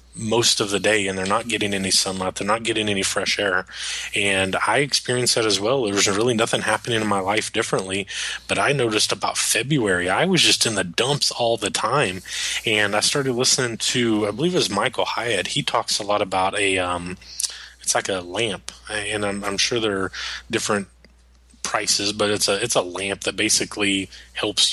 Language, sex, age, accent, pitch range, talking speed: English, male, 20-39, American, 95-115 Hz, 205 wpm